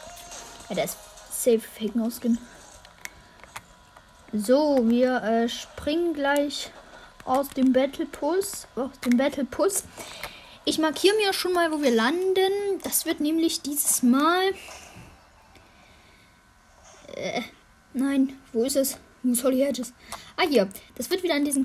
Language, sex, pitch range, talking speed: German, female, 250-315 Hz, 130 wpm